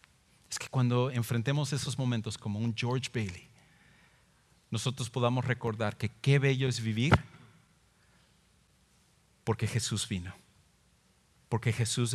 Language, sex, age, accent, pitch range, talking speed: English, male, 40-59, Mexican, 115-150 Hz, 115 wpm